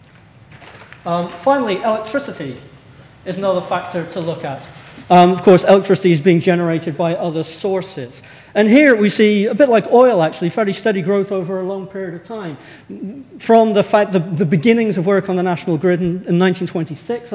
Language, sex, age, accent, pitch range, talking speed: English, male, 40-59, British, 155-200 Hz, 180 wpm